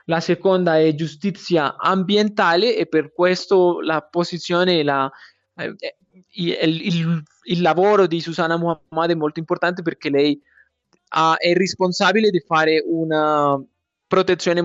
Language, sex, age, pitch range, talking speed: Italian, male, 20-39, 155-185 Hz, 125 wpm